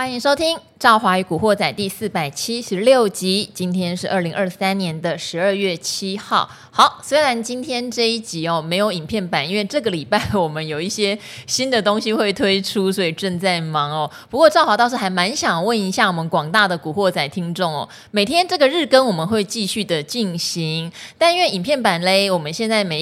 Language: Chinese